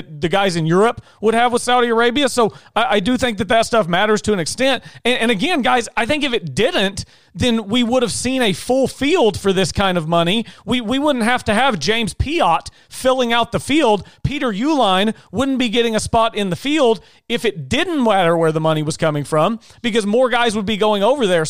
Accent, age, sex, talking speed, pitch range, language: American, 40-59, male, 230 wpm, 190-240 Hz, English